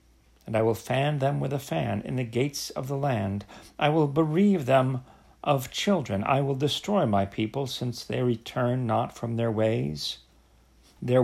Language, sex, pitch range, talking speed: English, male, 110-145 Hz, 175 wpm